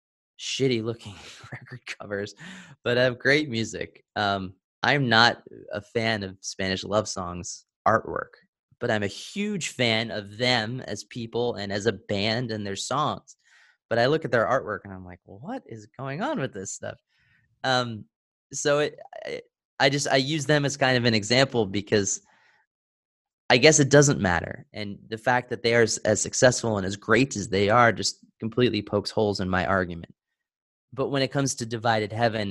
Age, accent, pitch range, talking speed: 20-39, American, 100-125 Hz, 175 wpm